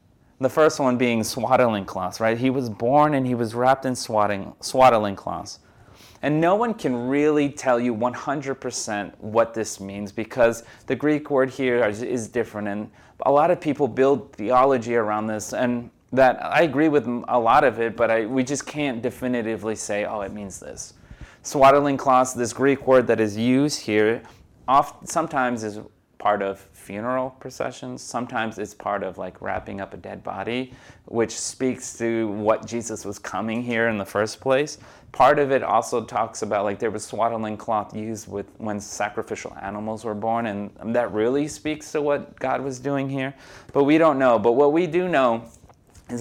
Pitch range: 105-130 Hz